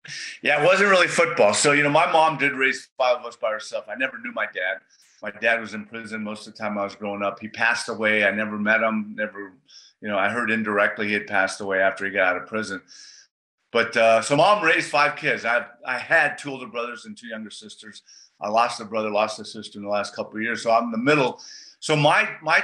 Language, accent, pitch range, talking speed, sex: English, American, 110-145 Hz, 255 wpm, male